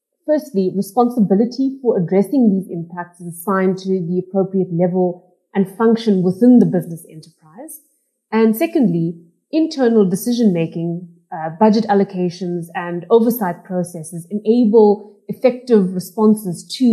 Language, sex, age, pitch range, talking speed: English, female, 30-49, 185-225 Hz, 110 wpm